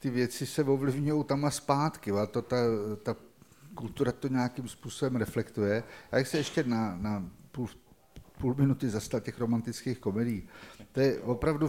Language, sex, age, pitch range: Czech, male, 50-69, 105-125 Hz